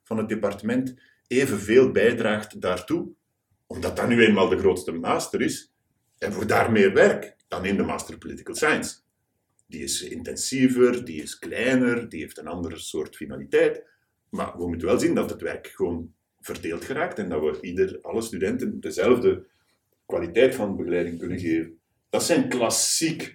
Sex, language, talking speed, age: male, Dutch, 165 wpm, 50-69